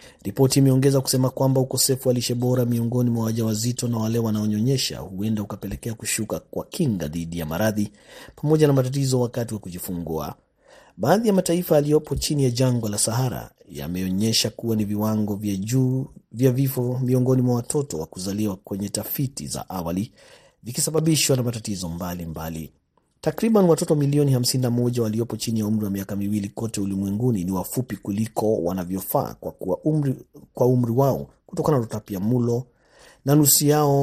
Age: 30-49